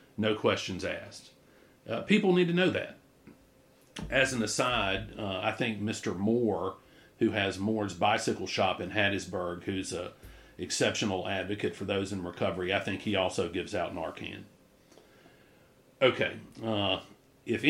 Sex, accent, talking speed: male, American, 140 wpm